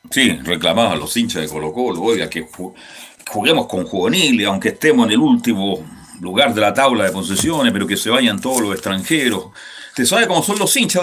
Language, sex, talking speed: Spanish, male, 200 wpm